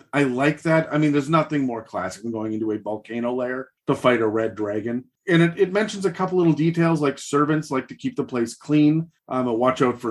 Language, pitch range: English, 125-160 Hz